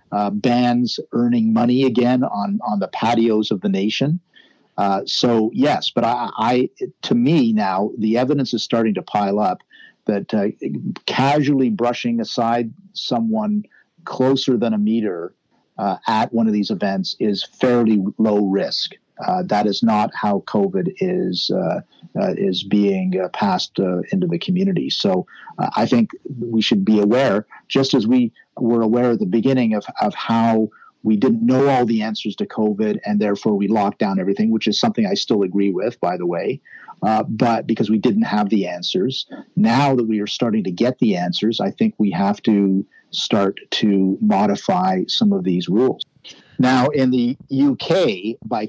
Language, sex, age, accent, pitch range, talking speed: English, male, 50-69, American, 105-140 Hz, 175 wpm